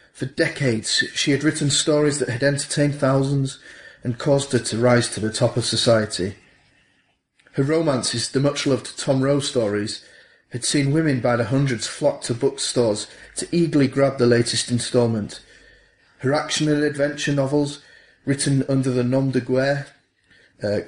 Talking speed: 155 wpm